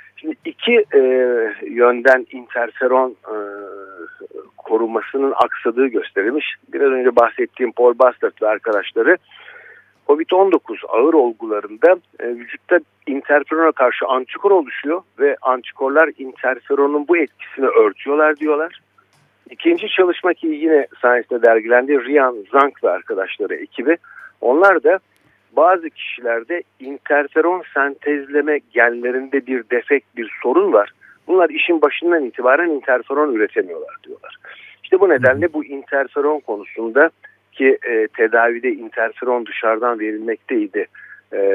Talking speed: 105 wpm